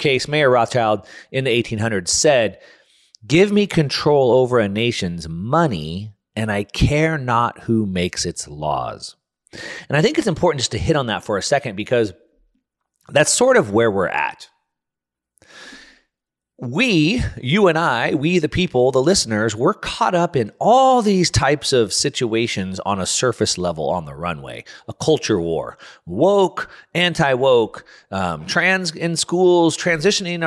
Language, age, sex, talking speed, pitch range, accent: English, 30-49, male, 150 wpm, 115-165 Hz, American